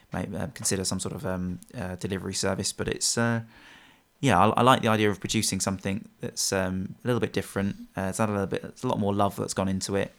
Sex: male